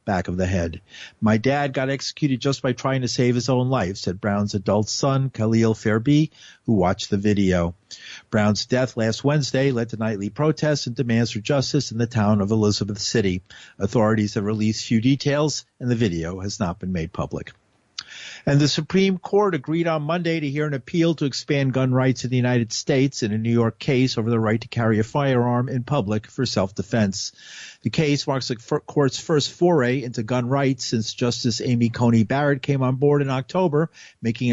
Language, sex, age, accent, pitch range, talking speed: English, male, 50-69, American, 110-140 Hz, 195 wpm